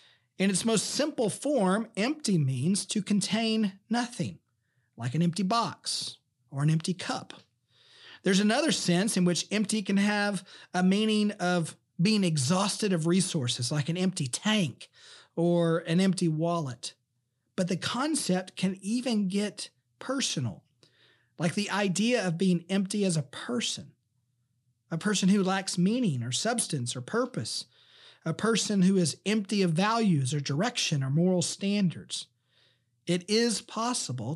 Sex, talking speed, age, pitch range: male, 140 wpm, 40-59, 140-205 Hz